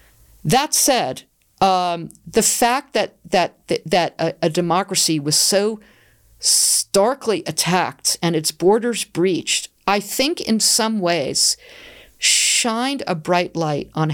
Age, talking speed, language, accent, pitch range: 50-69, 125 wpm, English, American, 160-210 Hz